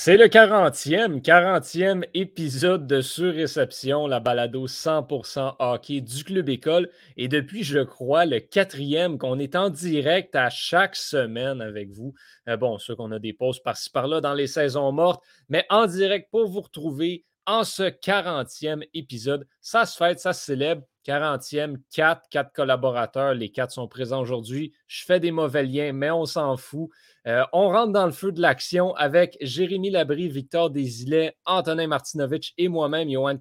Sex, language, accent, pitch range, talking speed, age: male, French, Canadian, 130-170 Hz, 165 wpm, 30-49